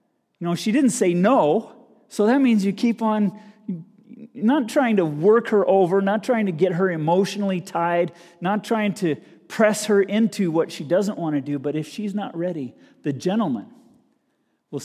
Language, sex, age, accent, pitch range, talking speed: English, male, 40-59, American, 170-245 Hz, 180 wpm